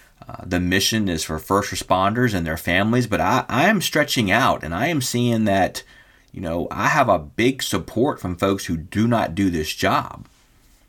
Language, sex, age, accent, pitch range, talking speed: English, male, 40-59, American, 85-110 Hz, 200 wpm